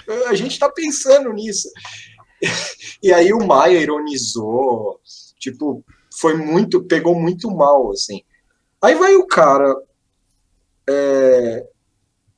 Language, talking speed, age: Portuguese, 105 wpm, 20-39